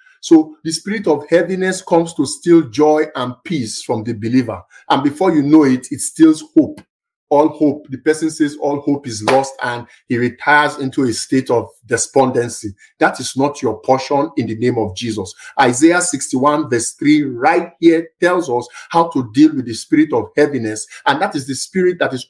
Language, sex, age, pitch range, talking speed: English, male, 50-69, 125-165 Hz, 195 wpm